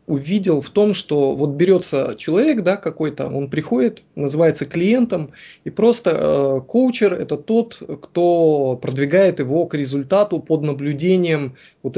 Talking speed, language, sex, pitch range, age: 135 wpm, Russian, male, 145-180 Hz, 20-39